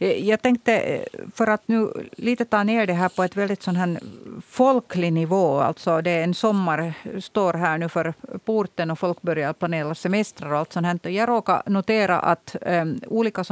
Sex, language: female, Swedish